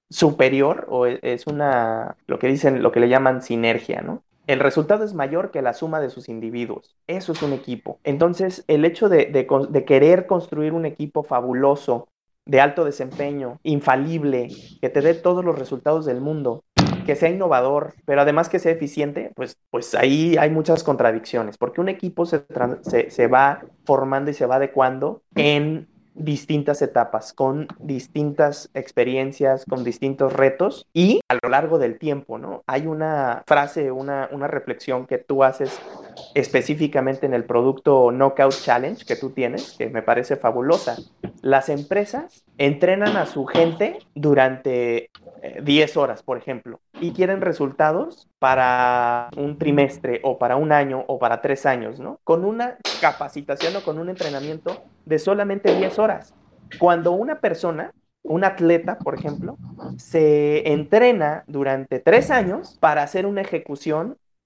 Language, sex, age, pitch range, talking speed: Spanish, male, 30-49, 130-165 Hz, 155 wpm